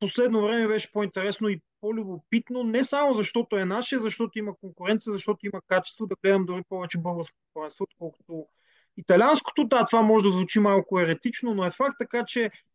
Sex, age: male, 30-49